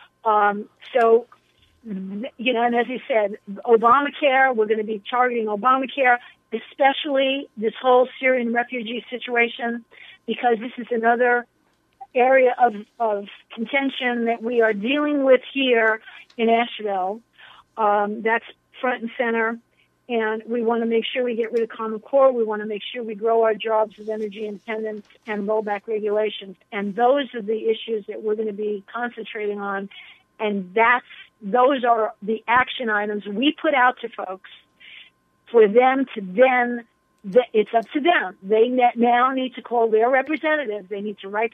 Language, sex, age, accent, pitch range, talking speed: English, female, 50-69, American, 215-250 Hz, 160 wpm